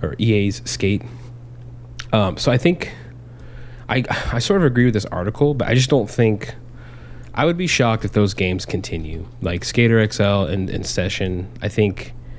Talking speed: 175 wpm